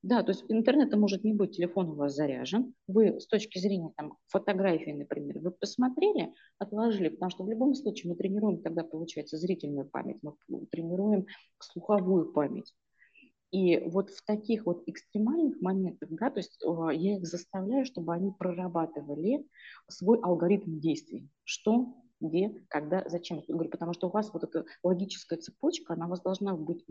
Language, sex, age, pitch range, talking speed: Russian, female, 30-49, 170-220 Hz, 165 wpm